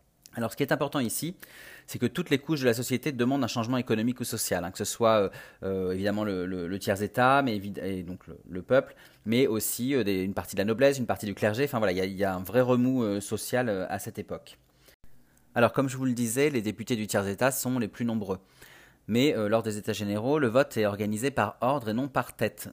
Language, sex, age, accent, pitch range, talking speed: French, male, 30-49, French, 100-125 Hz, 240 wpm